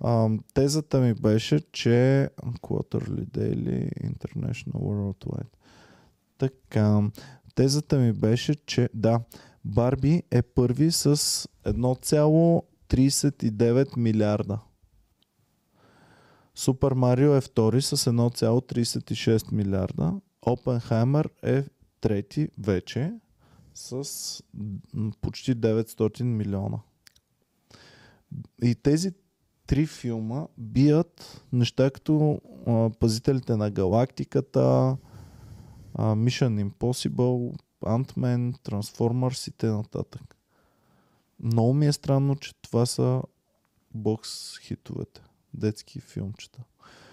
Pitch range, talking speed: 110-140 Hz, 80 wpm